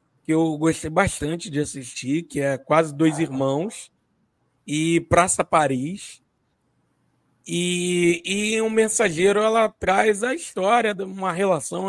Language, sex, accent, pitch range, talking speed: Portuguese, male, Brazilian, 155-215 Hz, 130 wpm